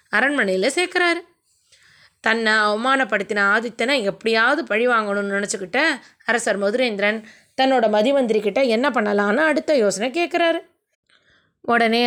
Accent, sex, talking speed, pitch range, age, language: native, female, 95 wpm, 210-285 Hz, 20-39, Tamil